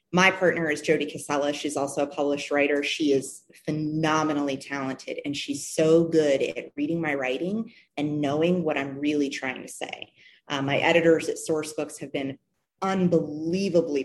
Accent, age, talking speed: American, 30-49, 160 wpm